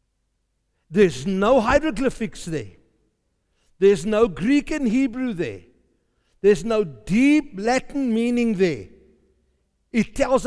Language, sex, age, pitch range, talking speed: English, male, 60-79, 165-270 Hz, 105 wpm